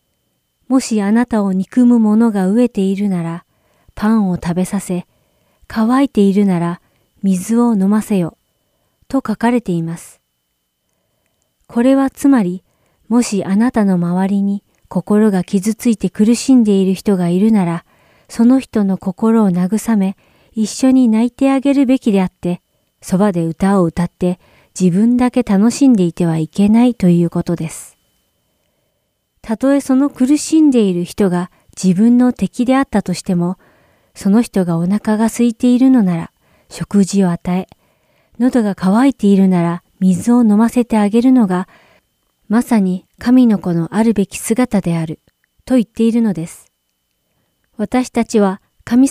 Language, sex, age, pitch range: Japanese, female, 40-59, 180-235 Hz